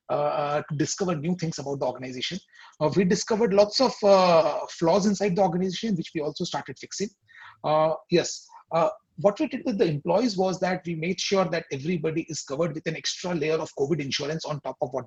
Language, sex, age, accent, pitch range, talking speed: English, male, 30-49, Indian, 150-195 Hz, 205 wpm